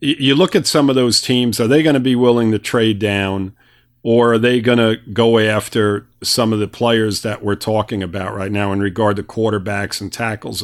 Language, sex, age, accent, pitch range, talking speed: English, male, 50-69, American, 110-135 Hz, 220 wpm